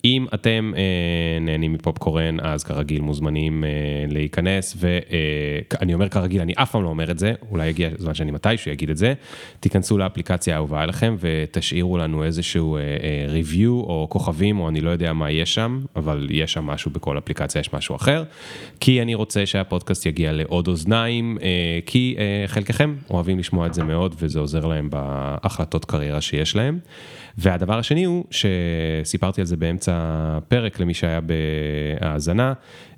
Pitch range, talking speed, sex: 80-100 Hz, 165 wpm, male